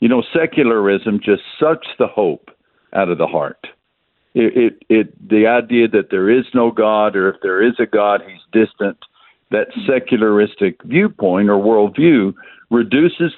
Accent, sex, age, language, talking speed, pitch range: American, male, 60-79, English, 155 wpm, 110-135 Hz